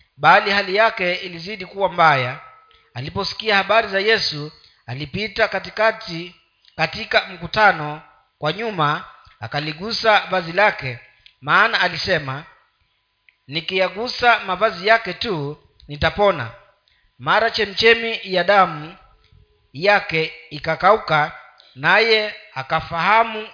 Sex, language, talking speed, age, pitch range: male, Swahili, 85 wpm, 40-59, 155-215 Hz